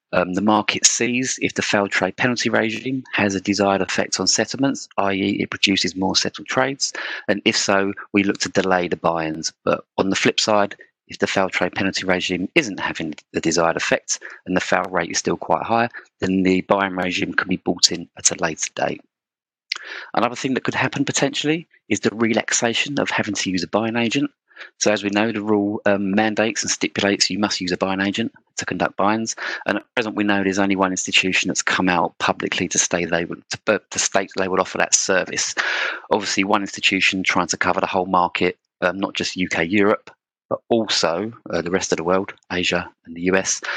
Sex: male